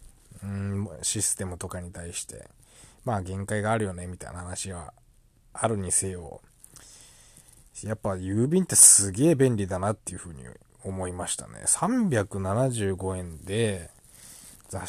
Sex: male